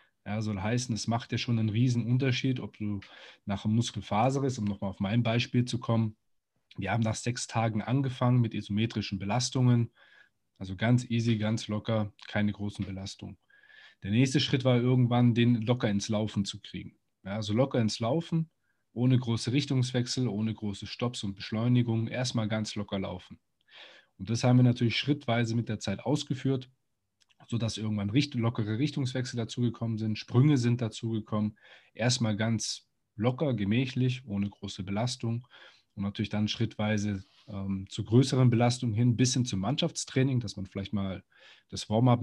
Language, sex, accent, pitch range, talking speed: German, male, German, 105-125 Hz, 165 wpm